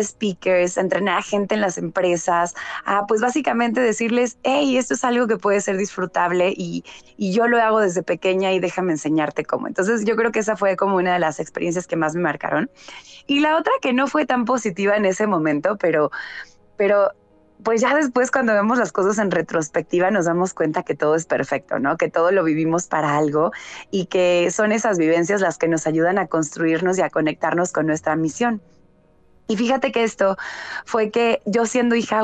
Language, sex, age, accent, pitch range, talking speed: Spanish, female, 20-39, Mexican, 180-240 Hz, 200 wpm